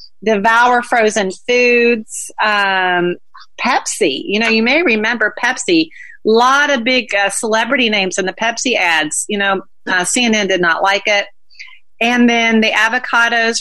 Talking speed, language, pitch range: 150 wpm, English, 180-230 Hz